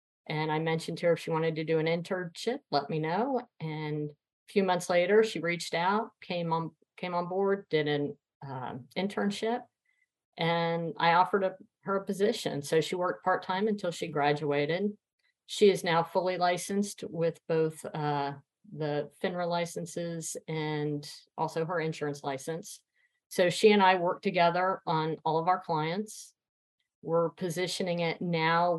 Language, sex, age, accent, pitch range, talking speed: English, female, 50-69, American, 155-185 Hz, 165 wpm